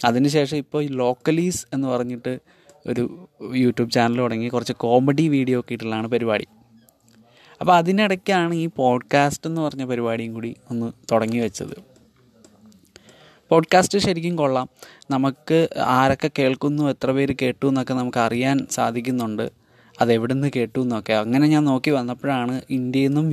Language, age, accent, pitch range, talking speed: Malayalam, 20-39, native, 115-140 Hz, 125 wpm